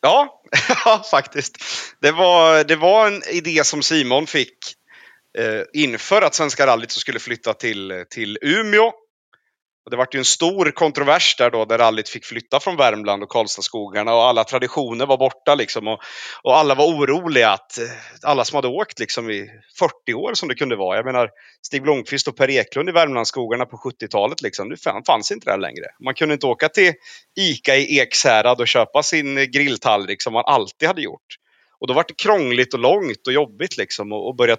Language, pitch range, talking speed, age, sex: Swedish, 125-180 Hz, 185 wpm, 30-49, male